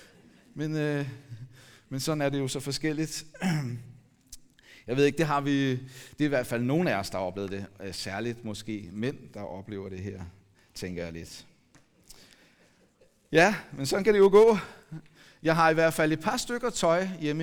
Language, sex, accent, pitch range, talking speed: Danish, male, native, 115-160 Hz, 185 wpm